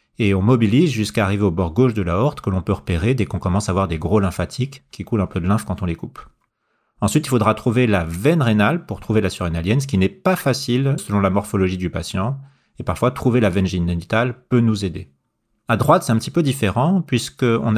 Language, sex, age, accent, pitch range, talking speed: French, male, 40-59, French, 100-135 Hz, 240 wpm